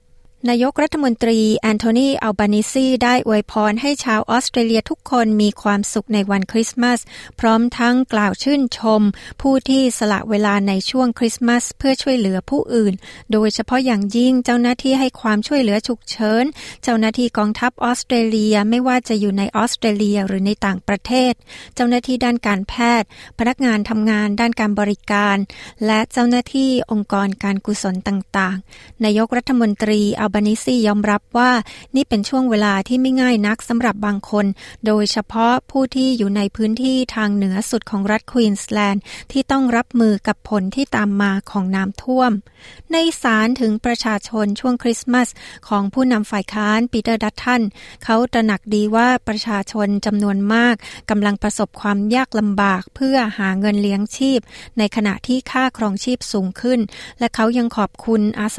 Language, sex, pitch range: Thai, female, 205-245 Hz